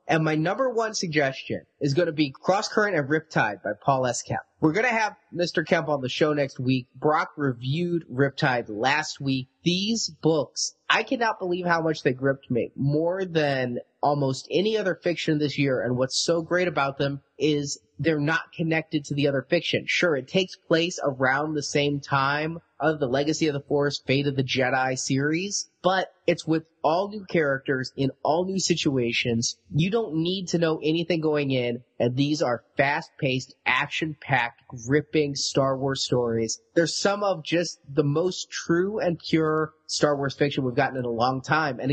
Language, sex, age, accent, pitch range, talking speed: English, male, 30-49, American, 135-170 Hz, 185 wpm